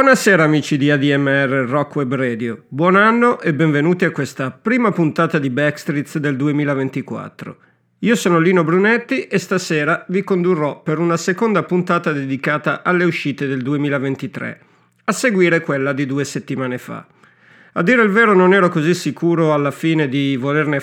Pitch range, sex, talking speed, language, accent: 140-175 Hz, male, 155 wpm, Italian, native